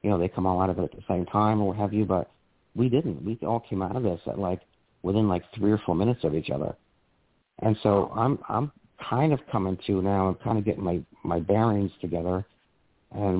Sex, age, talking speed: male, 50-69, 235 wpm